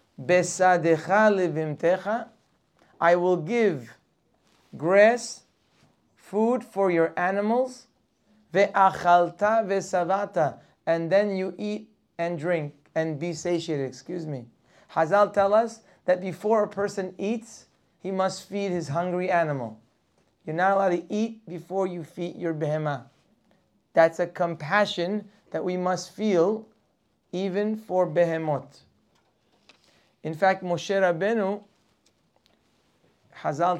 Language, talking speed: English, 105 wpm